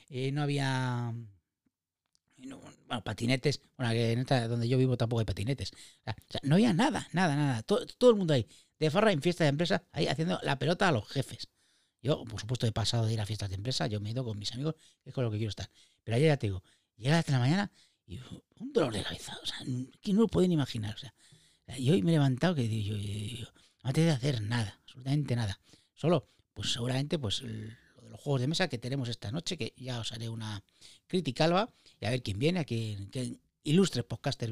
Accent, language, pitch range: Spanish, Spanish, 110-150 Hz